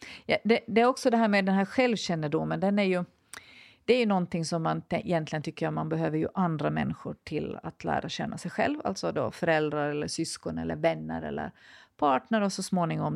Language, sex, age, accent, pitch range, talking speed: Swedish, female, 40-59, native, 160-205 Hz, 215 wpm